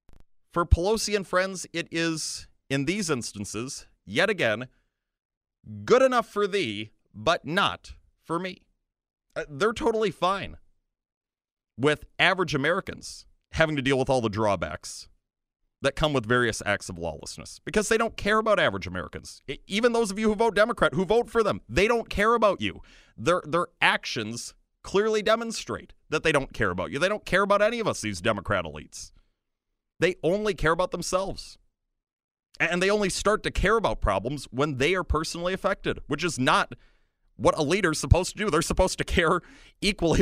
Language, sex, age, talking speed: English, male, 30-49, 175 wpm